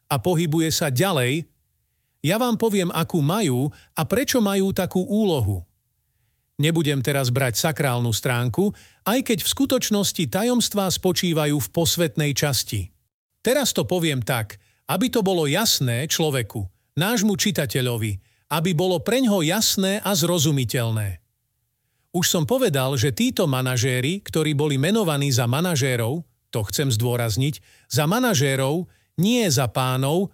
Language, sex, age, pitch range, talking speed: Slovak, male, 40-59, 125-185 Hz, 130 wpm